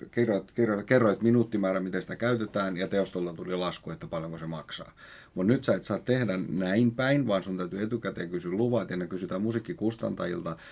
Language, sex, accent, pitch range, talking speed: Finnish, male, native, 90-115 Hz, 185 wpm